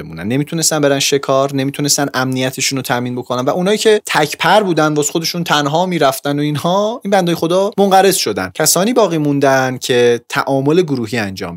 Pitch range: 120-160 Hz